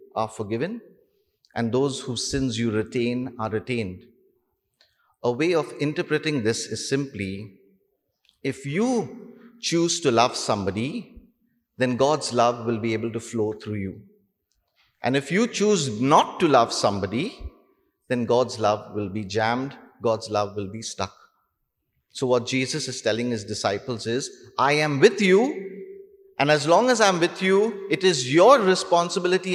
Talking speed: 150 wpm